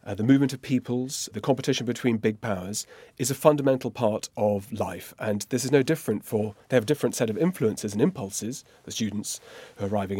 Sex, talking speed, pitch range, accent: male, 210 wpm, 110-140 Hz, British